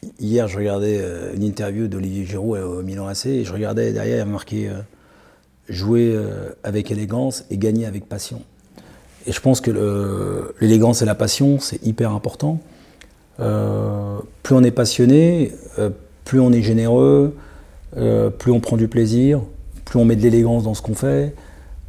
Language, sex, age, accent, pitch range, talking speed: French, male, 40-59, French, 100-125 Hz, 185 wpm